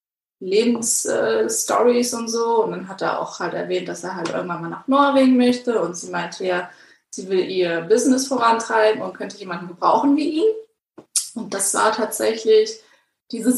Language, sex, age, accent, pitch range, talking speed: German, female, 20-39, German, 185-250 Hz, 170 wpm